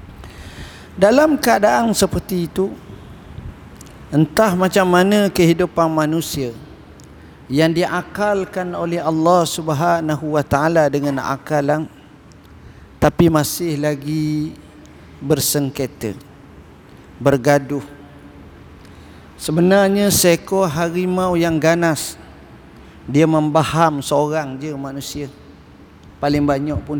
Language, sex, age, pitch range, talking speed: Malay, male, 50-69, 135-180 Hz, 75 wpm